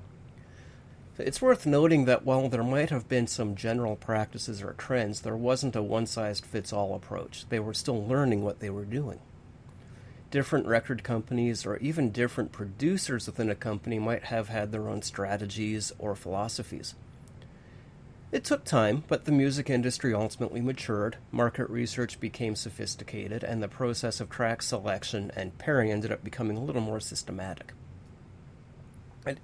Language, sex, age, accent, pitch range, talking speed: English, male, 30-49, American, 110-130 Hz, 150 wpm